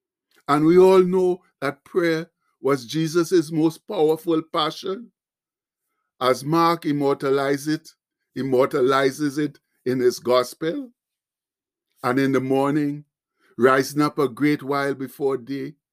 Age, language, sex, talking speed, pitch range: 60-79, English, male, 110 wpm, 145-175 Hz